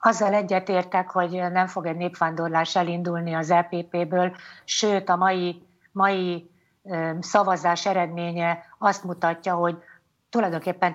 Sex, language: female, Hungarian